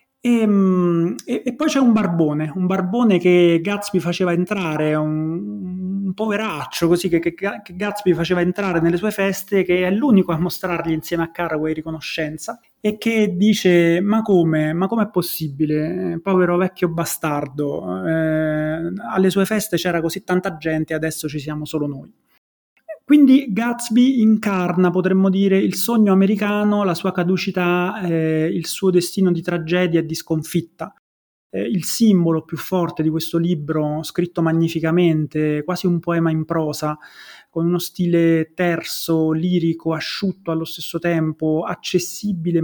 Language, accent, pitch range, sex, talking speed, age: Italian, native, 160-195 Hz, male, 150 wpm, 30-49